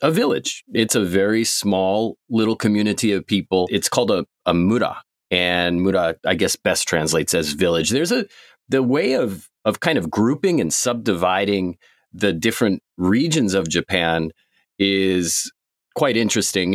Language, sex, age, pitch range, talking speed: English, male, 30-49, 85-100 Hz, 150 wpm